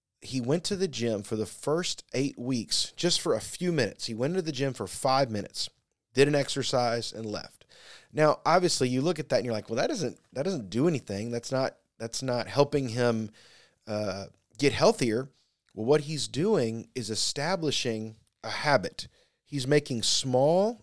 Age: 30-49